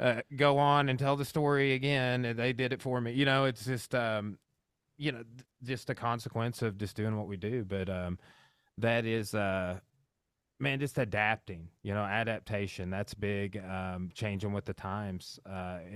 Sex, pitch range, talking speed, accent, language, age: male, 100-130 Hz, 190 wpm, American, English, 30-49